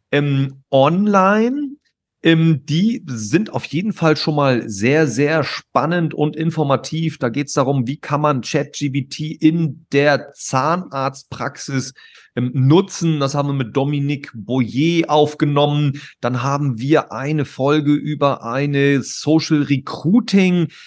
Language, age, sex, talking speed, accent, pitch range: German, 40-59, male, 120 wpm, German, 130-155 Hz